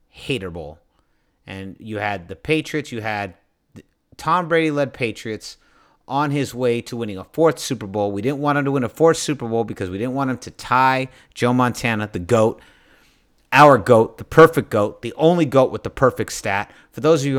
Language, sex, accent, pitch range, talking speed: English, male, American, 100-135 Hz, 200 wpm